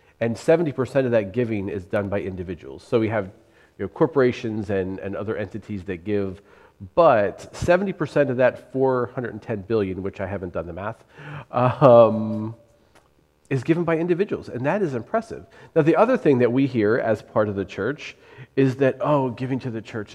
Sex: male